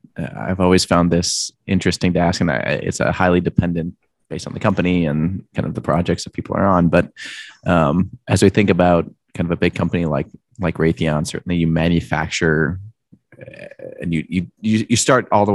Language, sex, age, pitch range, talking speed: English, male, 20-39, 85-95 Hz, 195 wpm